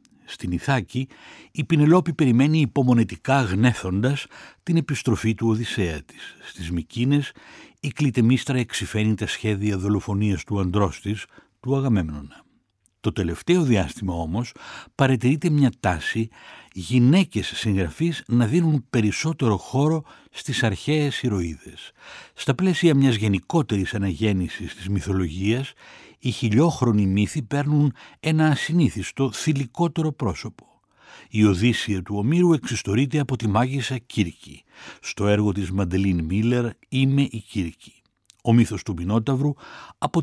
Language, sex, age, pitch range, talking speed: Greek, male, 60-79, 100-140 Hz, 115 wpm